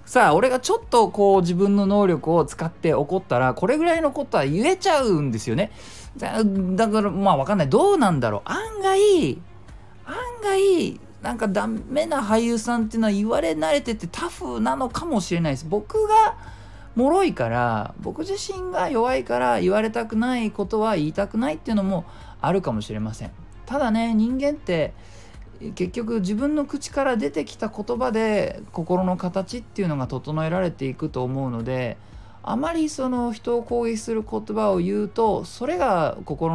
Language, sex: Japanese, male